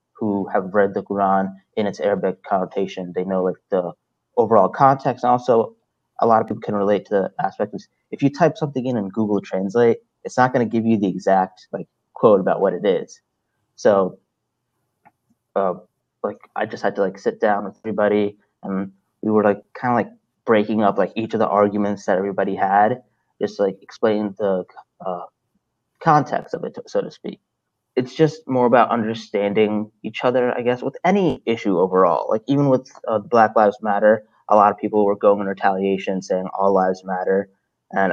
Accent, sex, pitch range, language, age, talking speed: American, male, 95-115 Hz, English, 20-39, 190 wpm